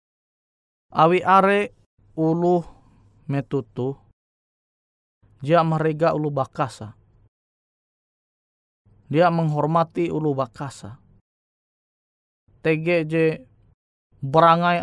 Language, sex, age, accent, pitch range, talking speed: Indonesian, male, 20-39, native, 110-165 Hz, 55 wpm